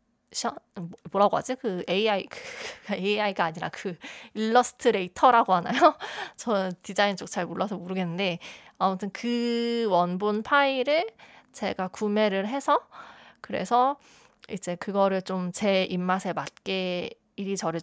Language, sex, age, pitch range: Korean, female, 20-39, 175-230 Hz